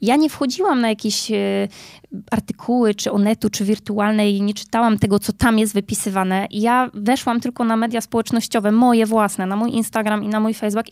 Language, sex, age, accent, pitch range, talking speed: Polish, female, 20-39, native, 210-240 Hz, 180 wpm